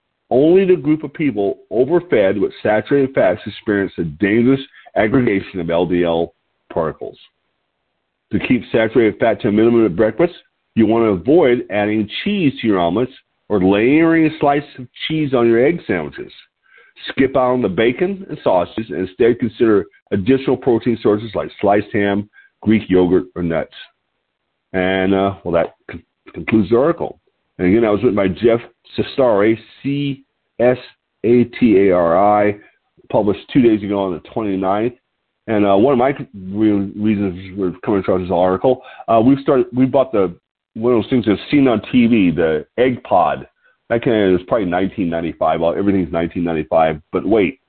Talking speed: 155 wpm